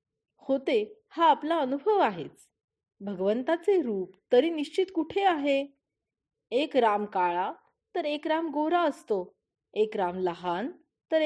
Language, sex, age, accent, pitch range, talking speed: Marathi, female, 30-49, native, 215-350 Hz, 125 wpm